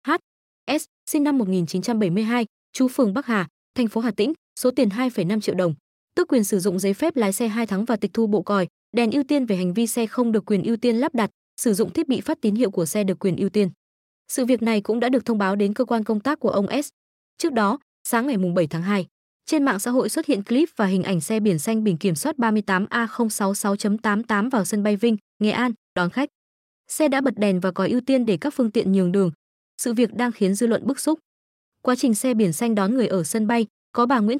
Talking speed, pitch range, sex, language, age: 250 wpm, 195-245 Hz, female, Vietnamese, 20-39